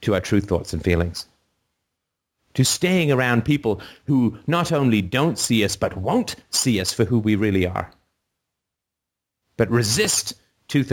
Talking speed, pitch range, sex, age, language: 155 wpm, 95-130 Hz, male, 40-59, English